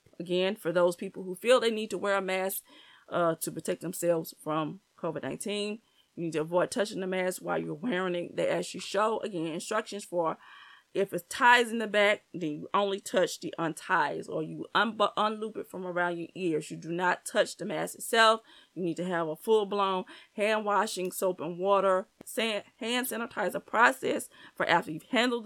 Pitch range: 175-215 Hz